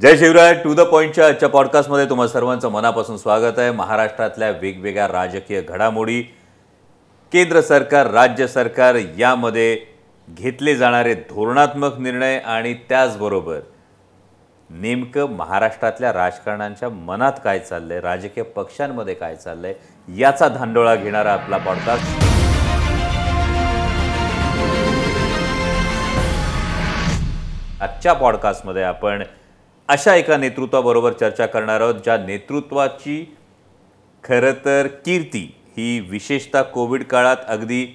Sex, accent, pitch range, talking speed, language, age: male, native, 105-140 Hz, 90 wpm, Marathi, 40-59